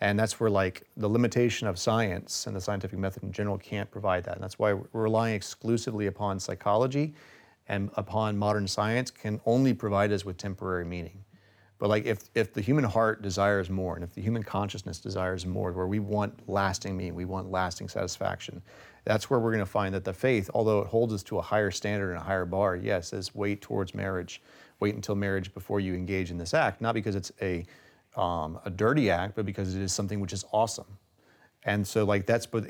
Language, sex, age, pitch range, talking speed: English, male, 40-59, 95-110 Hz, 215 wpm